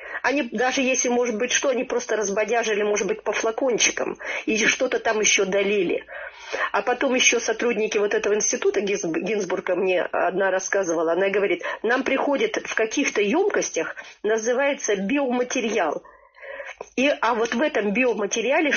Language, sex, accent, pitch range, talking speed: Russian, female, native, 200-270 Hz, 140 wpm